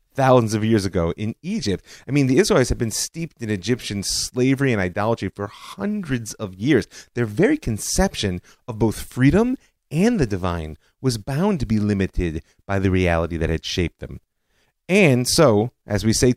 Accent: American